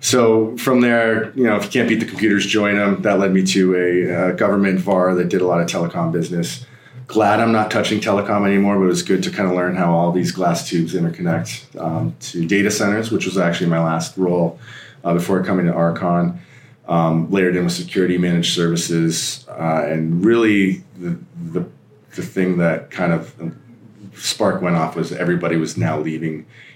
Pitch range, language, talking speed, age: 80-100 Hz, English, 195 wpm, 30-49